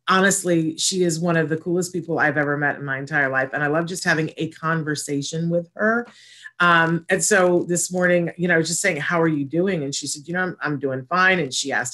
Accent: American